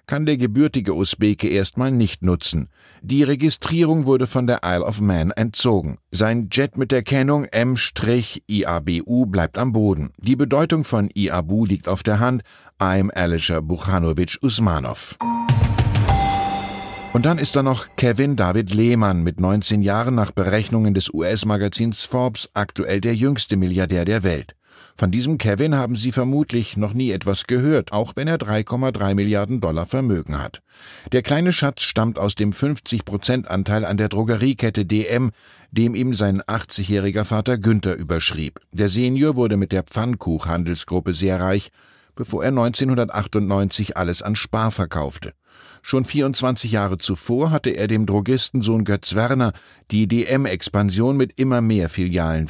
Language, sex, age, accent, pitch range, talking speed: German, male, 50-69, German, 95-125 Hz, 145 wpm